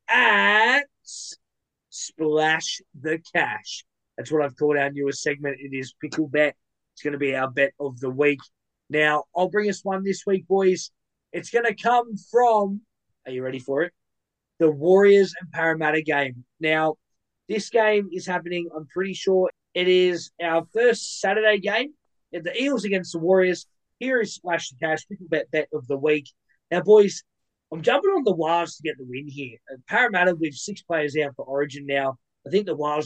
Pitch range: 145-195 Hz